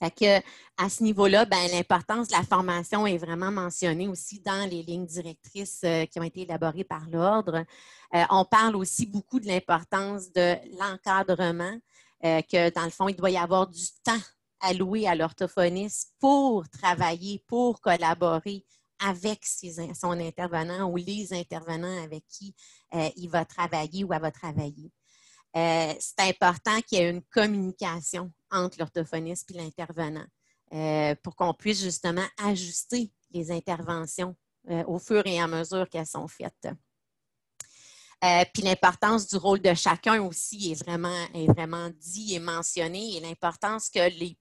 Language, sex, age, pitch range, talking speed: French, female, 30-49, 170-200 Hz, 150 wpm